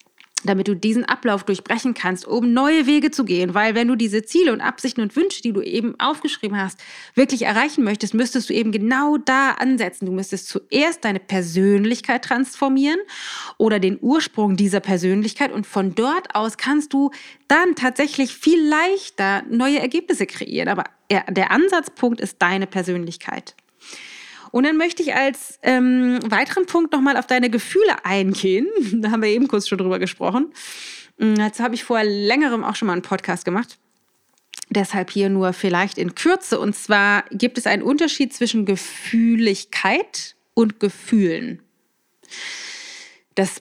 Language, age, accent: German, 30-49, German